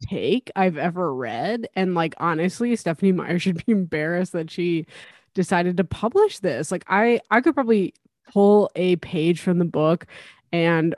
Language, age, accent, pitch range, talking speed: English, 20-39, American, 165-195 Hz, 165 wpm